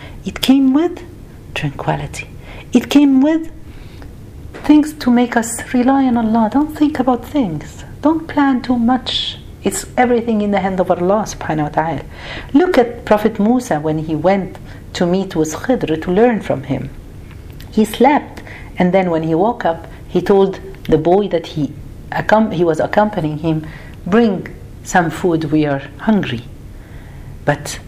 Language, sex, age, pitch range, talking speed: Arabic, female, 50-69, 155-245 Hz, 155 wpm